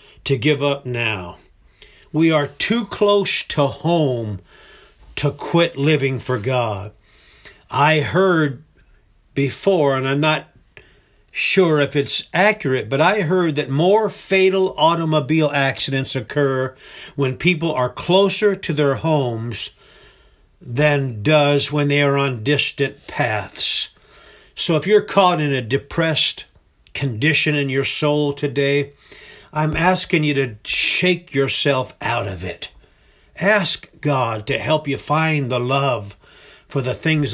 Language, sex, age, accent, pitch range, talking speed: English, male, 50-69, American, 125-155 Hz, 130 wpm